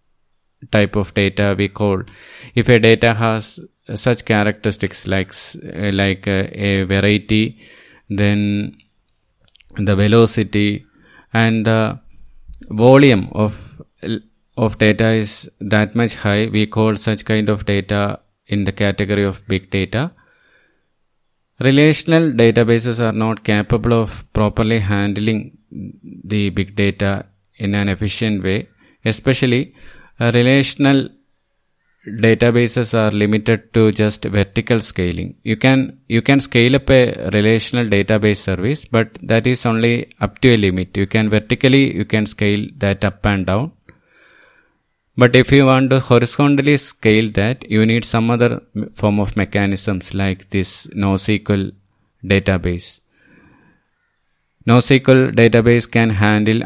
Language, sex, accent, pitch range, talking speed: English, male, Indian, 100-120 Hz, 125 wpm